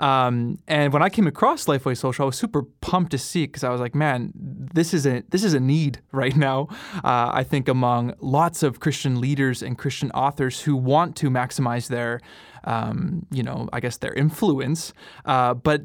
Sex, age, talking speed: male, 20-39, 200 wpm